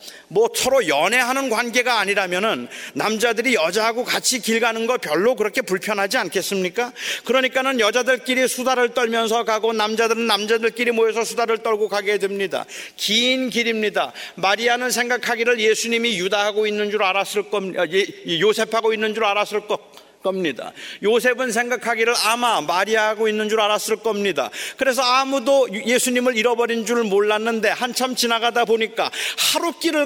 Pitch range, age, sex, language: 220-265 Hz, 40-59, male, Korean